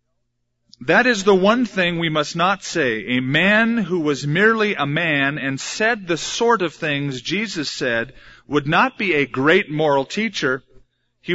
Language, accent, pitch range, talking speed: English, American, 130-190 Hz, 170 wpm